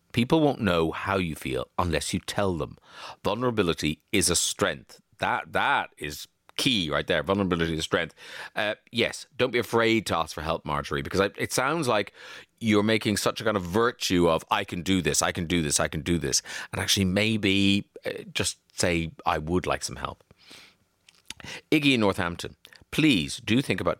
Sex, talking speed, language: male, 190 wpm, English